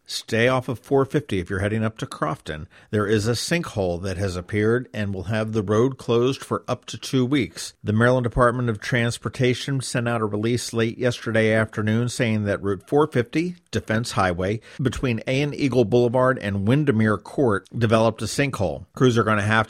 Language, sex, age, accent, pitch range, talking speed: English, male, 50-69, American, 100-125 Hz, 190 wpm